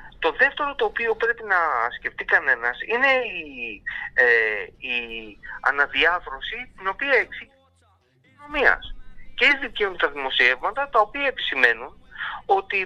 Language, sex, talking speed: Greek, male, 120 wpm